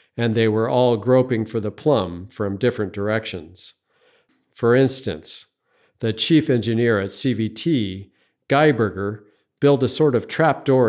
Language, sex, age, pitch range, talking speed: English, male, 50-69, 105-130 Hz, 130 wpm